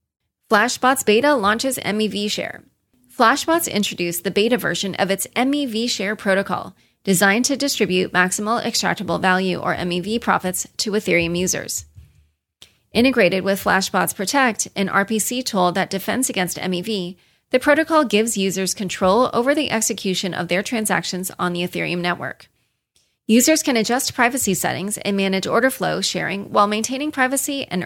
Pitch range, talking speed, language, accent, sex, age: 190-245 Hz, 145 wpm, English, American, female, 30-49